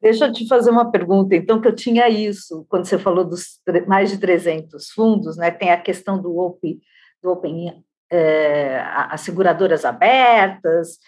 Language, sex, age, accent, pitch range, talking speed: Portuguese, female, 50-69, Brazilian, 205-275 Hz, 170 wpm